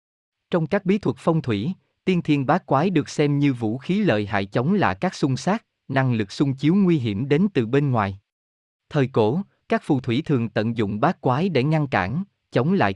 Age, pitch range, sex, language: 20-39, 110-165 Hz, male, Vietnamese